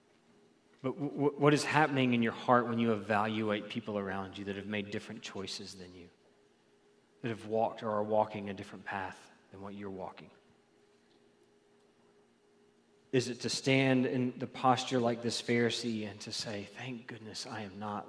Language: English